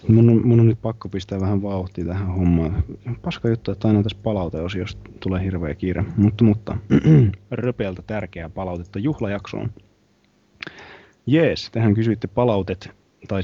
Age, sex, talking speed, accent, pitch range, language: 20-39, male, 140 wpm, native, 90-110 Hz, Finnish